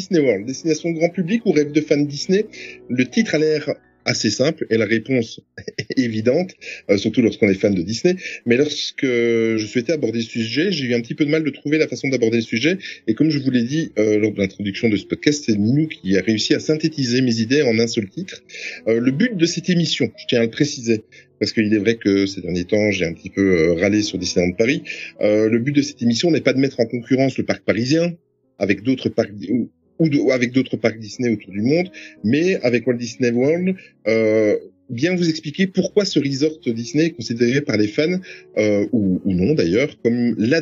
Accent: French